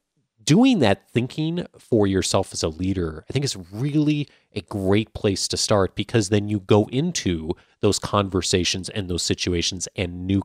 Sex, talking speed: male, 165 wpm